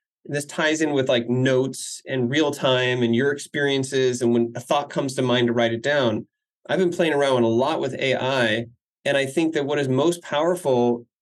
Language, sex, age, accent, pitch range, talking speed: English, male, 30-49, American, 135-175 Hz, 210 wpm